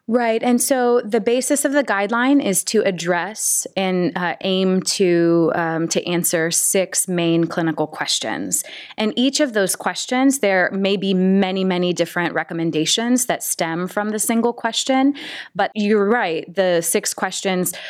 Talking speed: 150 wpm